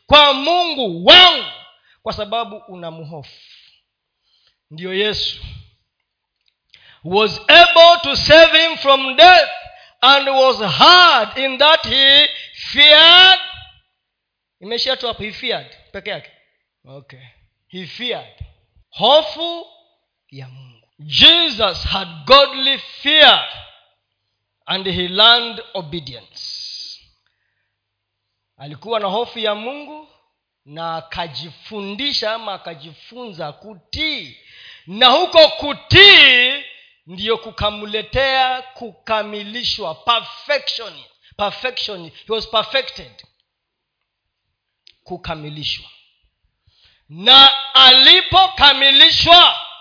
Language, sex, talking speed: Swahili, male, 75 wpm